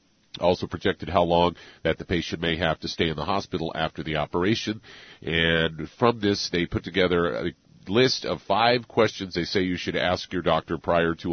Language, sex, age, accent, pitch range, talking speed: English, male, 50-69, American, 85-100 Hz, 195 wpm